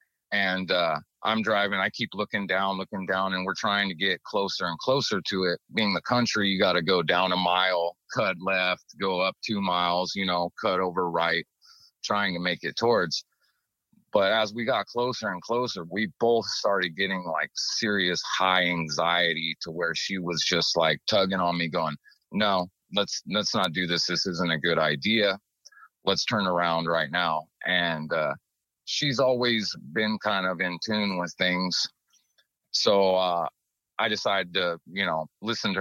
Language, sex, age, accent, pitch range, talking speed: English, male, 30-49, American, 90-105 Hz, 180 wpm